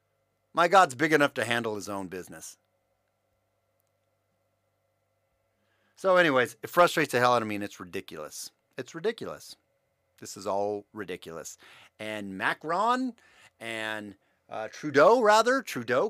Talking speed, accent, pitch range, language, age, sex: 125 wpm, American, 110-170 Hz, English, 40-59, male